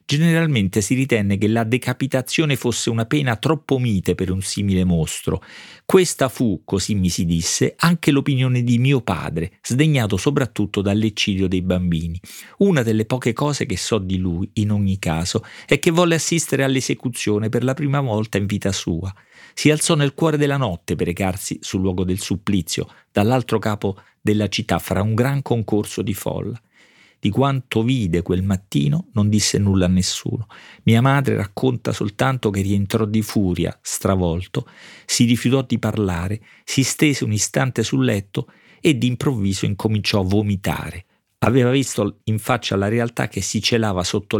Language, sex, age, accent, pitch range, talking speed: Italian, male, 40-59, native, 95-130 Hz, 160 wpm